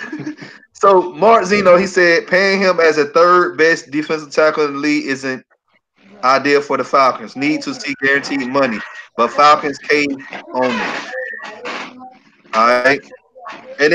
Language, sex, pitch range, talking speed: English, male, 145-190 Hz, 135 wpm